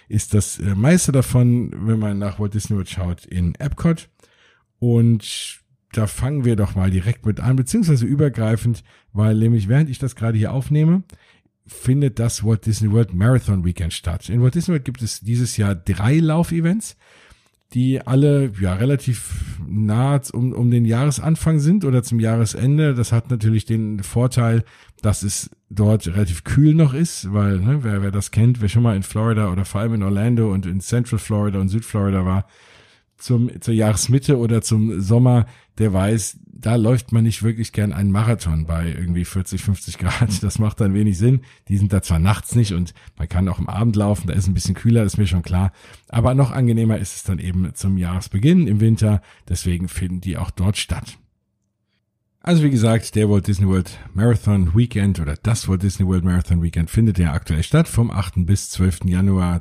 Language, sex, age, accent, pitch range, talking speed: German, male, 50-69, German, 95-120 Hz, 190 wpm